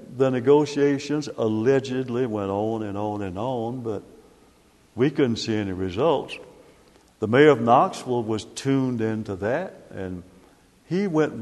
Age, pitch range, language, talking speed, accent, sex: 60-79, 110-135 Hz, English, 135 wpm, American, male